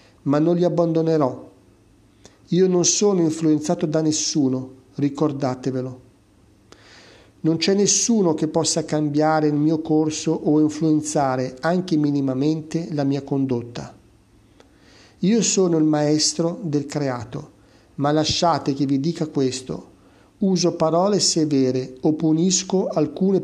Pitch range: 135-170 Hz